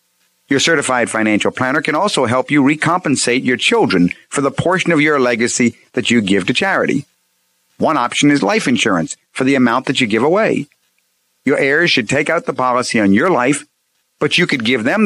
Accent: American